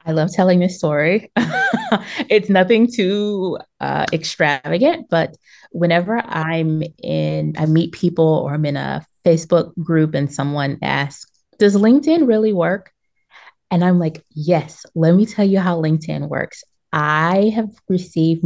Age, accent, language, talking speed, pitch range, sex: 20-39, American, English, 145 wpm, 150-205 Hz, female